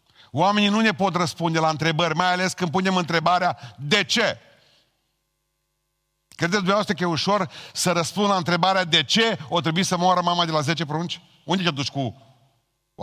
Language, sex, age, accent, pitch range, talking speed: Romanian, male, 50-69, native, 125-175 Hz, 180 wpm